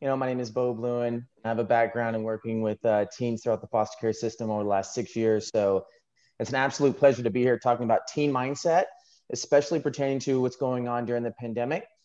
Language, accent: English, American